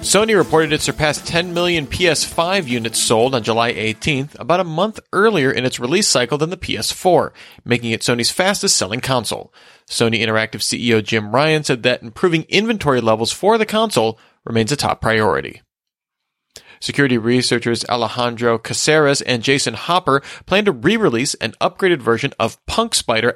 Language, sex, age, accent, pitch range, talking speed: English, male, 30-49, American, 115-150 Hz, 155 wpm